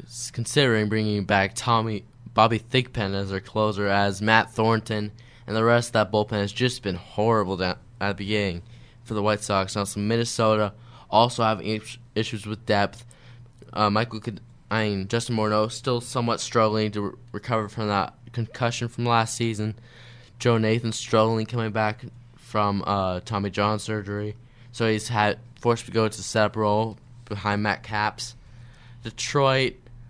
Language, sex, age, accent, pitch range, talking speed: English, male, 10-29, American, 105-120 Hz, 160 wpm